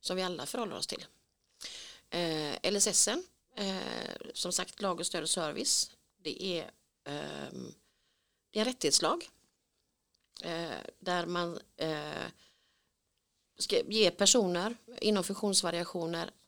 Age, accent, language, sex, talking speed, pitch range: 30-49, native, Swedish, female, 90 wpm, 175-225 Hz